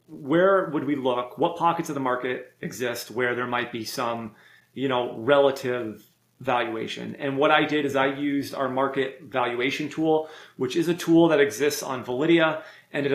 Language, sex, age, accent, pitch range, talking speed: English, male, 30-49, American, 125-150 Hz, 185 wpm